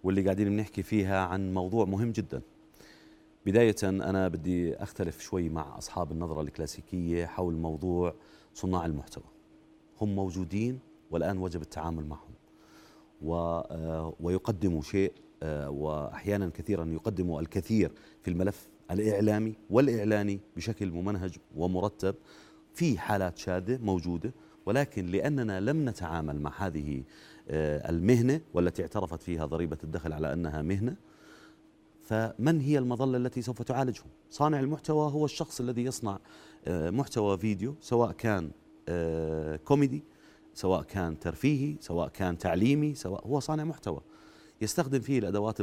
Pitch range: 85-125 Hz